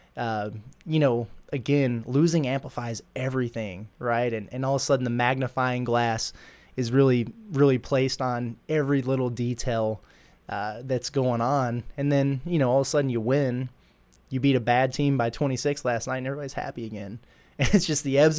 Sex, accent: male, American